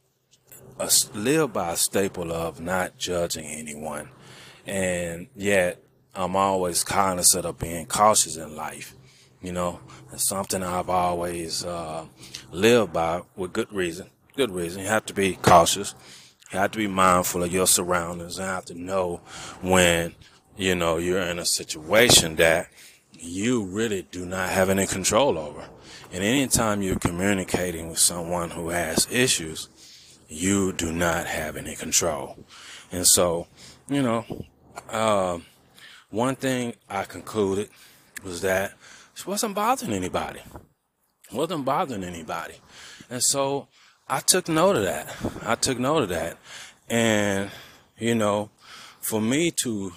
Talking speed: 145 wpm